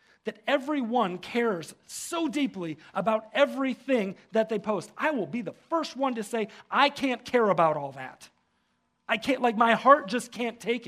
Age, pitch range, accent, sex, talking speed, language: 40-59, 175-250 Hz, American, male, 175 wpm, English